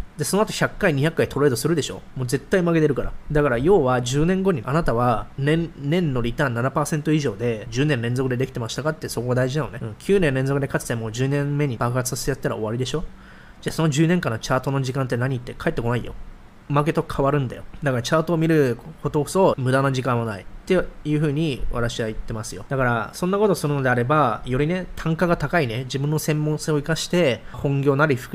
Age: 20-39